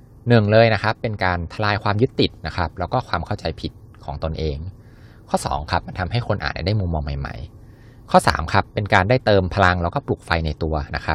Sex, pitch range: male, 90-115 Hz